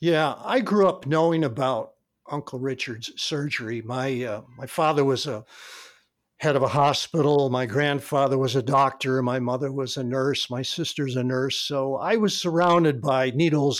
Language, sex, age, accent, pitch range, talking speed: English, male, 60-79, American, 135-180 Hz, 170 wpm